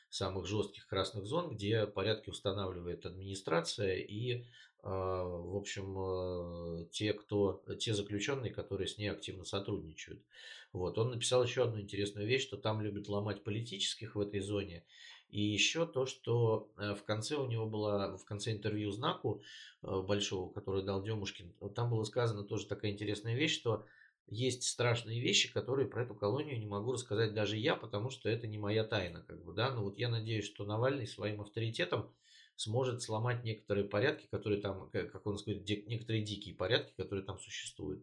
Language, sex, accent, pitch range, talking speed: Russian, male, native, 100-115 Hz, 165 wpm